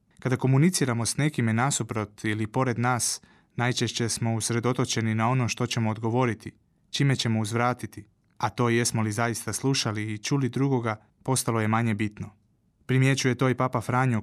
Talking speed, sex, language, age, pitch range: 155 wpm, male, Croatian, 20-39, 110-125 Hz